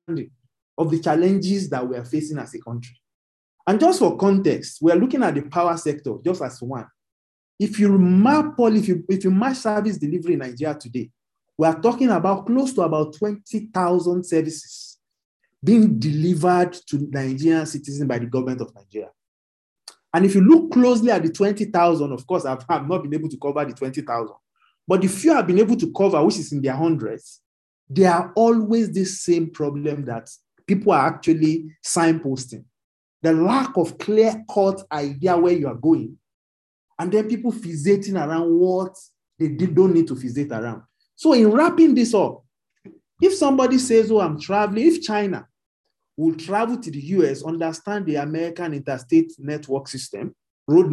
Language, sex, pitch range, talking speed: English, male, 145-205 Hz, 170 wpm